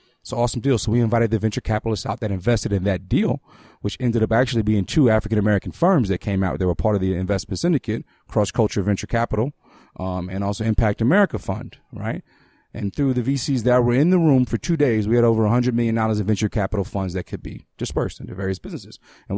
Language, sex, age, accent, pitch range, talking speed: English, male, 30-49, American, 100-125 Hz, 230 wpm